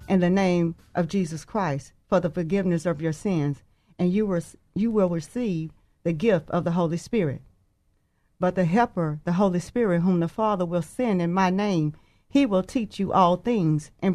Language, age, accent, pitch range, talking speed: English, 40-59, American, 170-205 Hz, 185 wpm